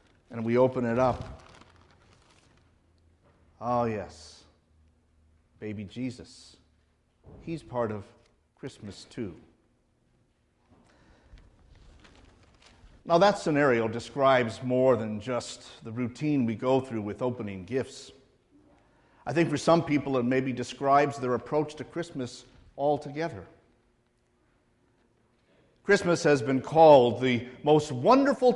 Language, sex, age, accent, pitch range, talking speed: English, male, 50-69, American, 115-150 Hz, 105 wpm